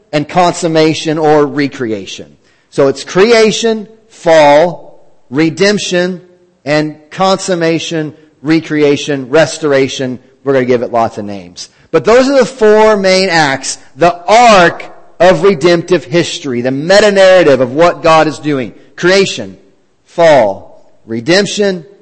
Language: English